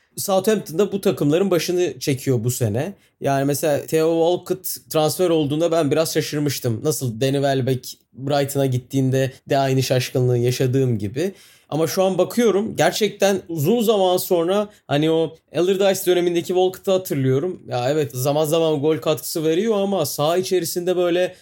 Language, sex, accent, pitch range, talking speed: Turkish, male, native, 135-185 Hz, 145 wpm